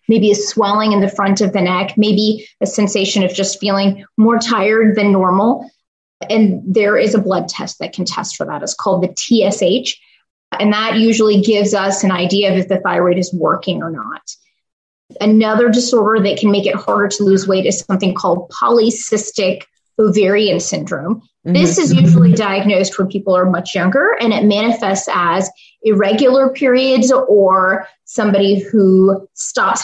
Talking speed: 170 wpm